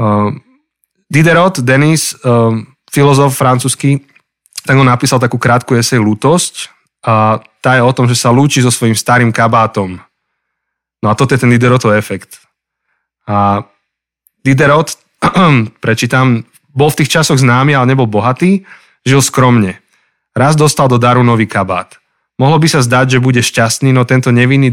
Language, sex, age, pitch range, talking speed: Slovak, male, 20-39, 115-135 Hz, 145 wpm